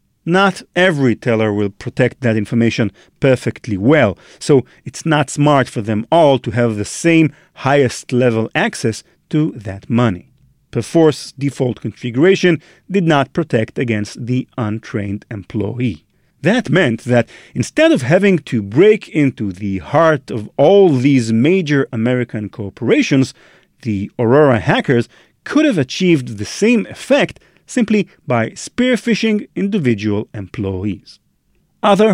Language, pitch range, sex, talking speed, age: English, 115-180 Hz, male, 125 wpm, 40-59